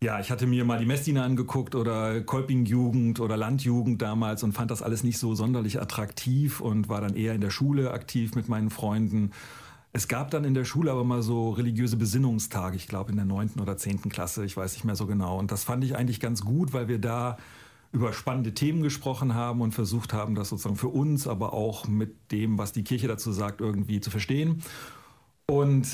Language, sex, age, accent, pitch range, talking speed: German, male, 40-59, German, 110-125 Hz, 215 wpm